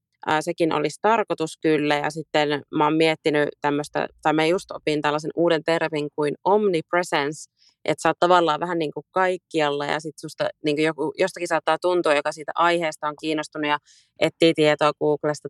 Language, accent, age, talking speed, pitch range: Finnish, native, 30-49, 170 wpm, 150-165 Hz